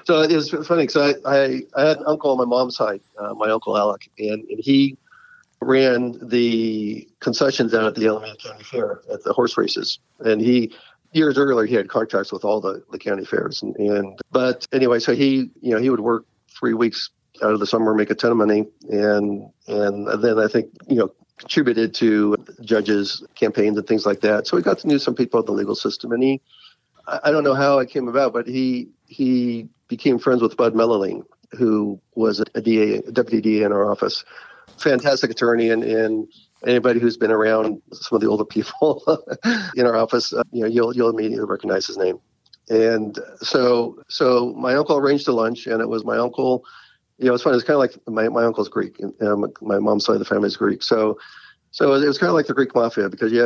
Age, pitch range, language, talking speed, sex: 50-69, 110-130 Hz, English, 225 wpm, male